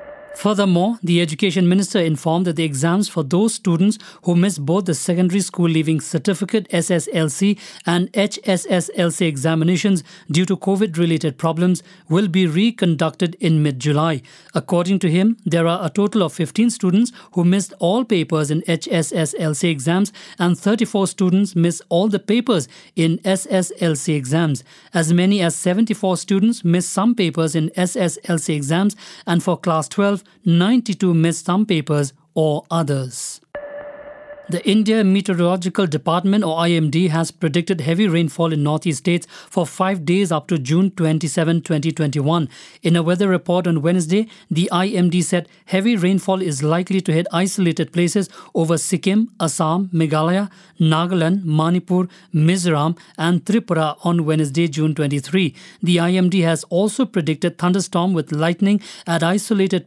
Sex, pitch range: male, 165-195 Hz